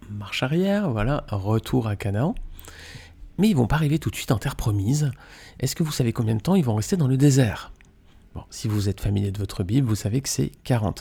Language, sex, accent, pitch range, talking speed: French, male, French, 105-145 Hz, 235 wpm